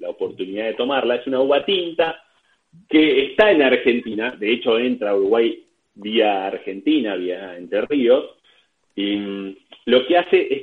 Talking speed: 150 wpm